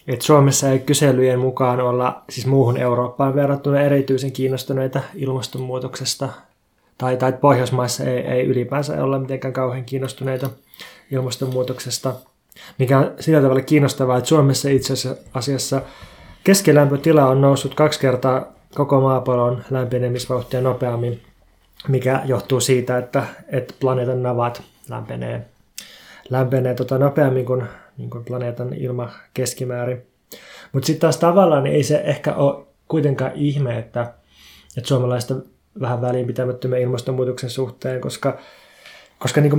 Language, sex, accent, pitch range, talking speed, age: Finnish, male, native, 125-140 Hz, 125 wpm, 20-39